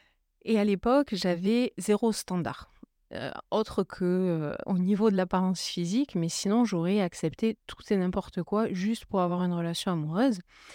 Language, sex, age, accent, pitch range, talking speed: French, female, 30-49, French, 175-220 Hz, 155 wpm